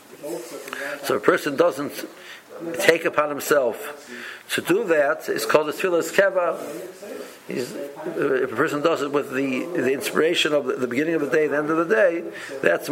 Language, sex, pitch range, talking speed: English, male, 130-170 Hz, 185 wpm